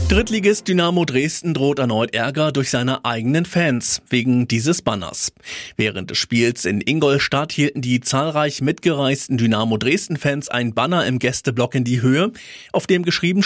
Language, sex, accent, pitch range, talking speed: German, male, German, 125-165 Hz, 155 wpm